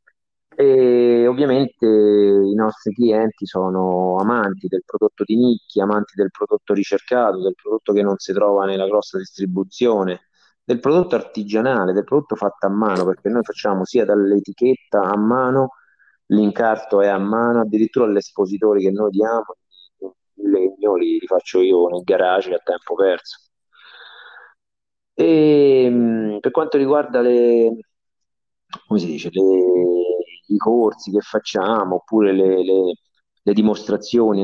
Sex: male